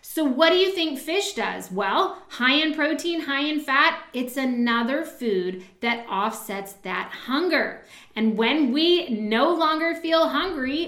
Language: English